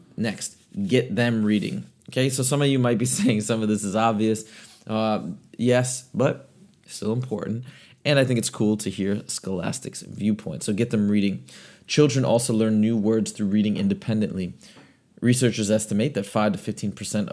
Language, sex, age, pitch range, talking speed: English, male, 30-49, 105-125 Hz, 165 wpm